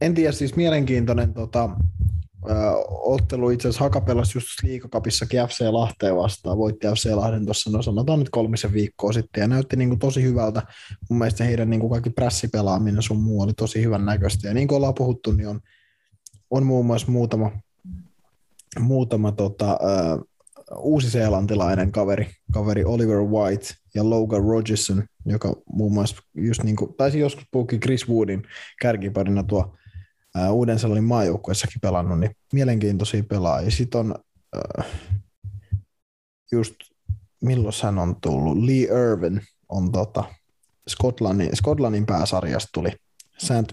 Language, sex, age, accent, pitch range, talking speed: Finnish, male, 20-39, native, 100-120 Hz, 135 wpm